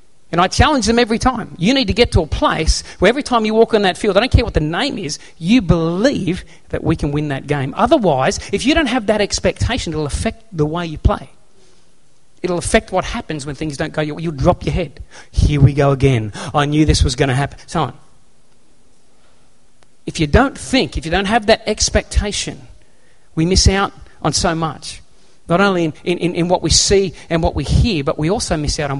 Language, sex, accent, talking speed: English, male, Australian, 225 wpm